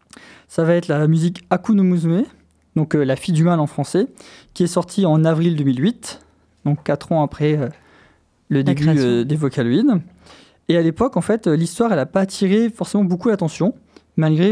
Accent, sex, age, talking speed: French, male, 20-39, 180 wpm